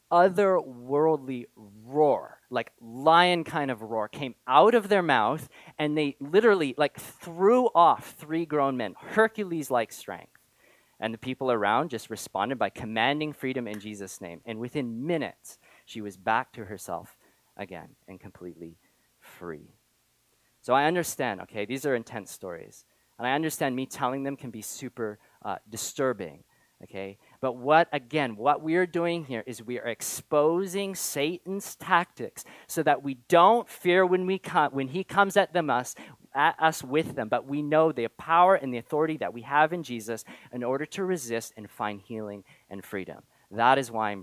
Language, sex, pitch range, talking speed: English, male, 110-160 Hz, 170 wpm